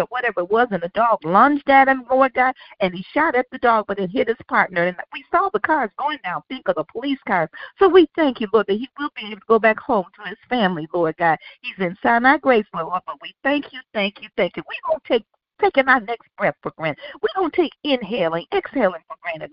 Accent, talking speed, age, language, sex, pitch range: American, 255 wpm, 50-69, English, female, 210-295 Hz